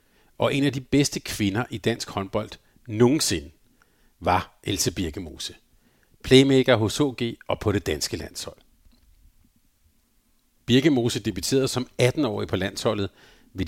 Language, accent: Danish, native